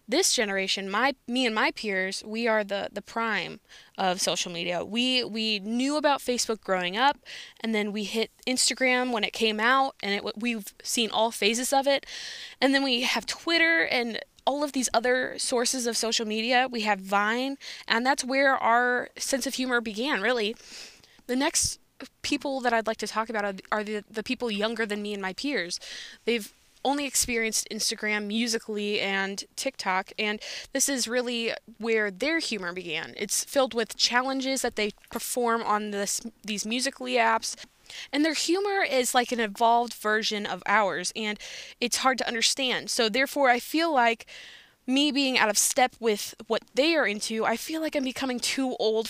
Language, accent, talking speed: English, American, 180 wpm